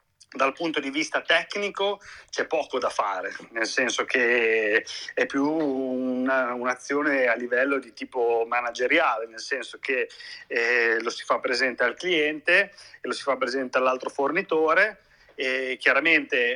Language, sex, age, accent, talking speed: Italian, male, 30-49, native, 140 wpm